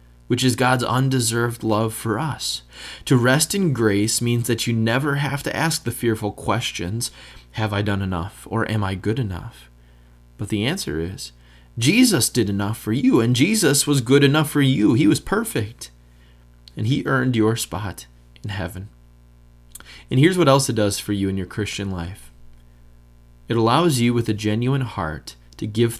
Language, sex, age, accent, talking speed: English, male, 20-39, American, 180 wpm